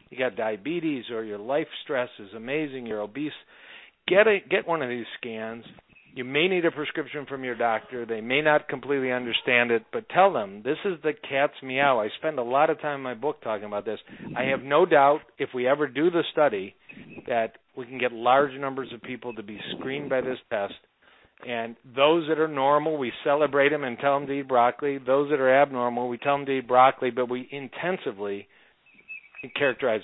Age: 50-69